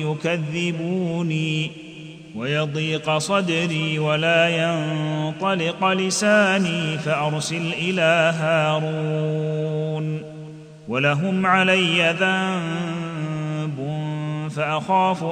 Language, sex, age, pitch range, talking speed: Arabic, male, 30-49, 155-175 Hz, 50 wpm